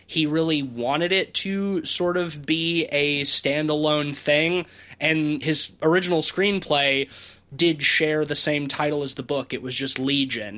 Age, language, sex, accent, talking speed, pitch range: 20-39, English, male, American, 155 wpm, 135-160 Hz